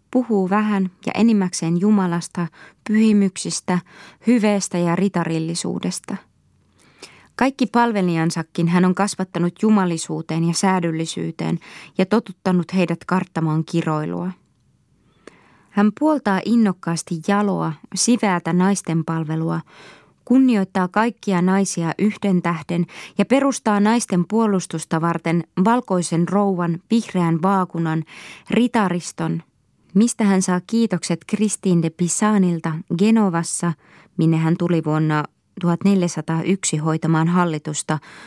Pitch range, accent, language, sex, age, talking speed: 165-200 Hz, native, Finnish, female, 20-39, 95 wpm